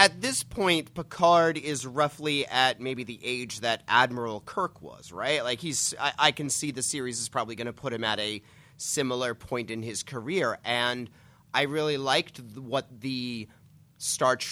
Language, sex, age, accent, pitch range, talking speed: English, male, 30-49, American, 110-140 Hz, 180 wpm